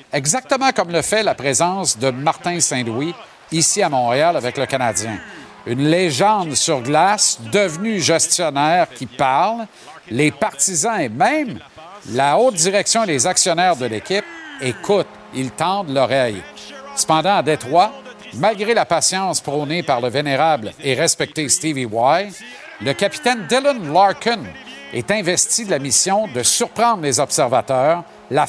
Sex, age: male, 50-69